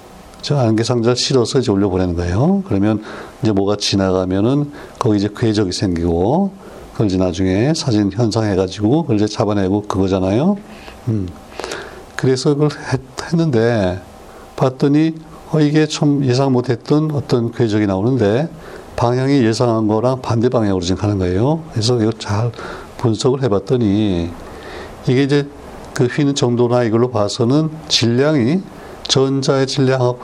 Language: Korean